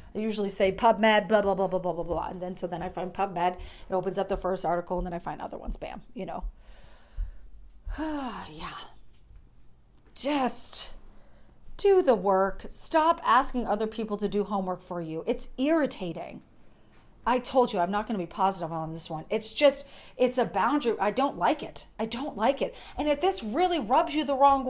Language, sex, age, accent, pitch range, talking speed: English, female, 40-59, American, 190-285 Hz, 200 wpm